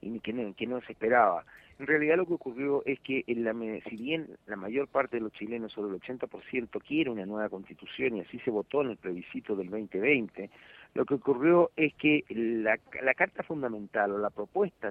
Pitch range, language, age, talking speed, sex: 110-145 Hz, Spanish, 50-69, 210 wpm, male